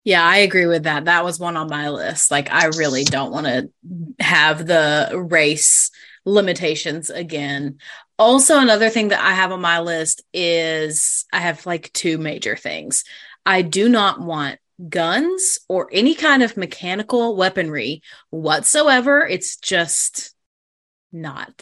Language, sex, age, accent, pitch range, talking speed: English, female, 20-39, American, 170-210 Hz, 145 wpm